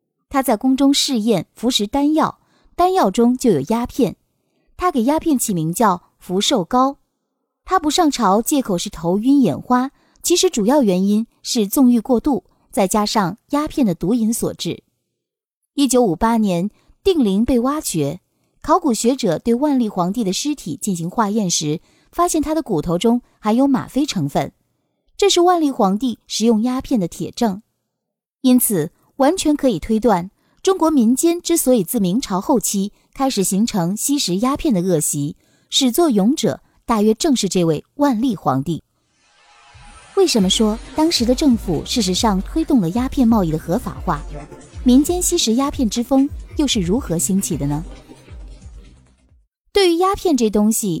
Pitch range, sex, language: 195-280 Hz, female, Chinese